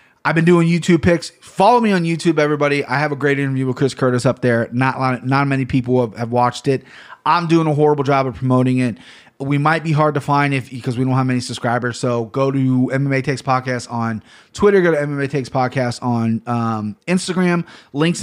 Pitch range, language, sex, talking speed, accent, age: 125-150 Hz, English, male, 215 wpm, American, 30-49